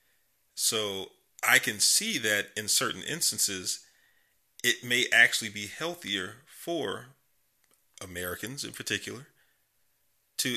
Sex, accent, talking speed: male, American, 100 wpm